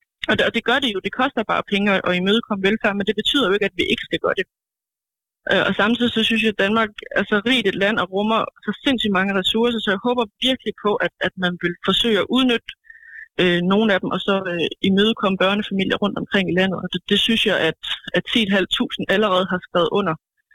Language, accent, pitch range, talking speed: Danish, native, 185-225 Hz, 225 wpm